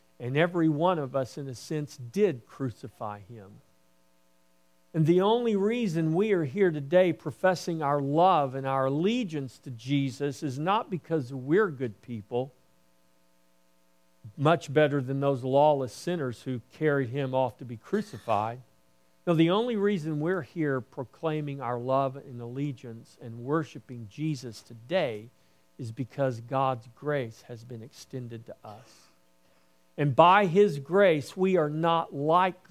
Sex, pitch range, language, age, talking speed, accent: male, 110-155 Hz, English, 50-69, 145 wpm, American